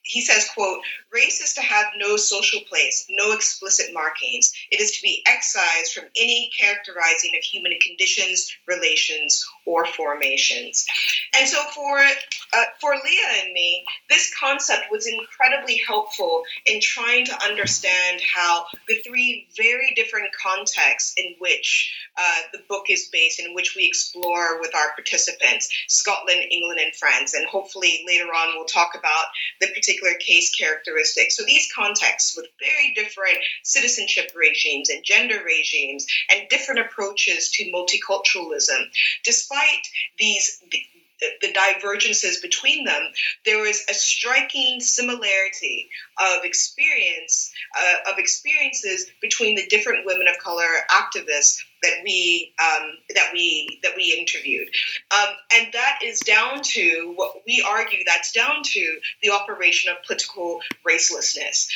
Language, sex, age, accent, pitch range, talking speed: English, female, 30-49, American, 180-300 Hz, 140 wpm